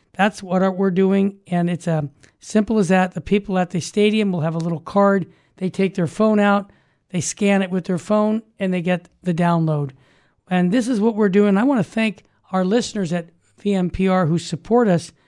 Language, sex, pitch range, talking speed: English, male, 175-215 Hz, 210 wpm